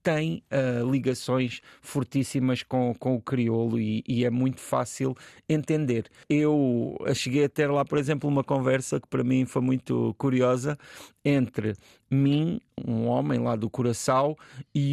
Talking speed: 150 wpm